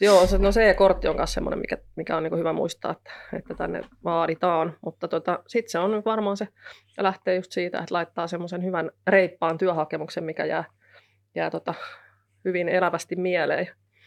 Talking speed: 170 wpm